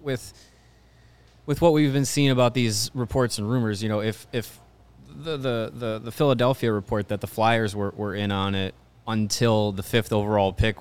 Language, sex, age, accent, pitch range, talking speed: English, male, 20-39, American, 105-125 Hz, 190 wpm